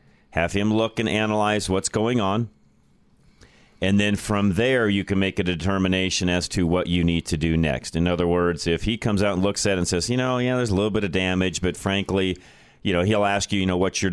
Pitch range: 85-100 Hz